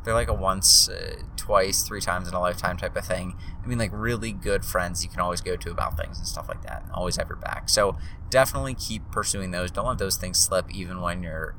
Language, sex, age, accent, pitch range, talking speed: English, male, 20-39, American, 90-105 Hz, 255 wpm